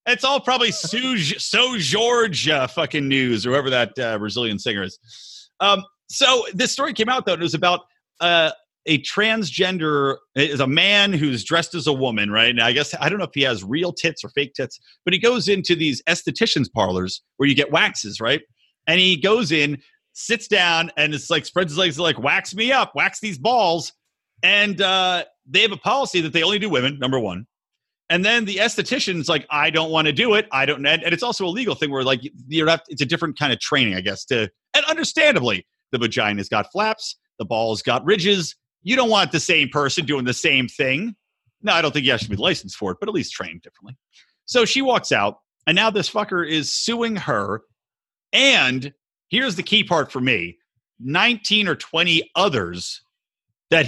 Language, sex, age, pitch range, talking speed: English, male, 30-49, 130-205 Hz, 210 wpm